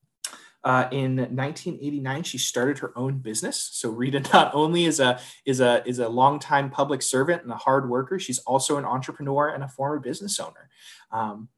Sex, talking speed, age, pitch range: male, 165 wpm, 20-39, 120-140 Hz